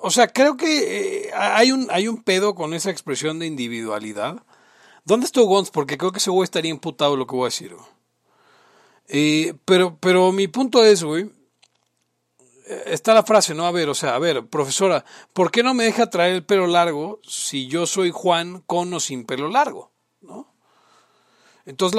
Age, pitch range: 40-59, 145-210 Hz